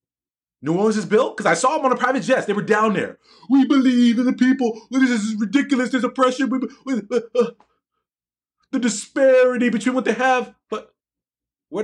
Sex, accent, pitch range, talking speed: male, American, 175-235 Hz, 175 wpm